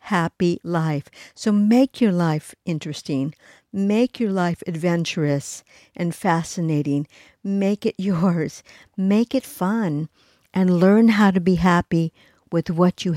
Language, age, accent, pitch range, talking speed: English, 60-79, American, 160-190 Hz, 130 wpm